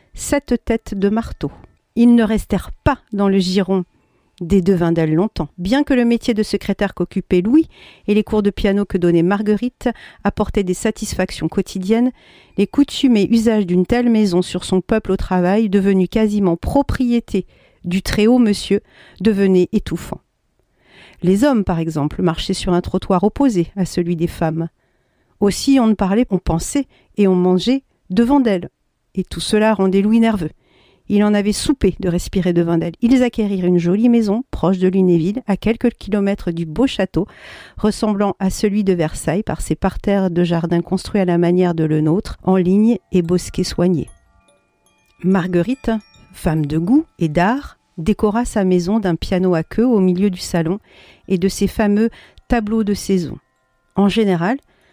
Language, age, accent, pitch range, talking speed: French, 50-69, French, 180-220 Hz, 170 wpm